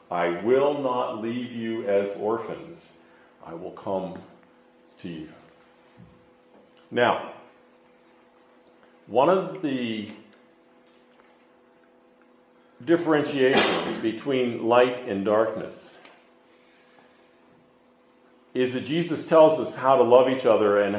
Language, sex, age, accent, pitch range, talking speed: English, male, 50-69, American, 85-130 Hz, 90 wpm